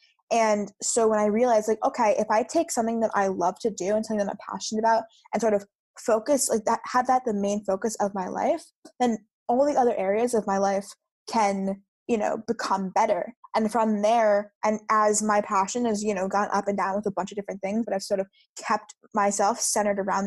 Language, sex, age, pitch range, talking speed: English, female, 10-29, 200-240 Hz, 230 wpm